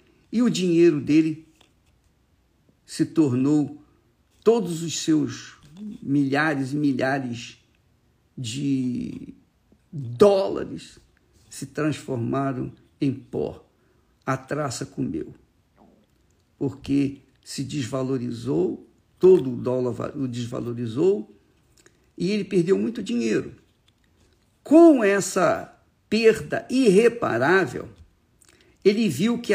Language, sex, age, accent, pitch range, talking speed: Portuguese, male, 50-69, Brazilian, 135-195 Hz, 85 wpm